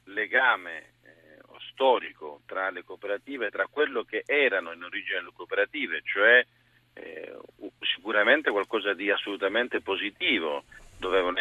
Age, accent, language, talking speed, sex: 40-59, native, Italian, 120 wpm, male